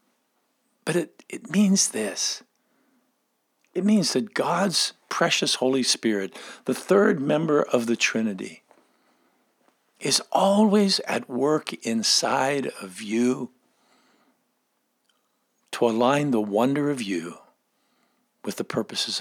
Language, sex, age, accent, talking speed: English, male, 50-69, American, 105 wpm